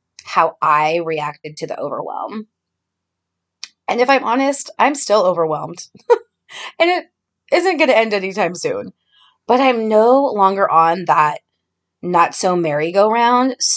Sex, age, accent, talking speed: female, 20-39, American, 130 wpm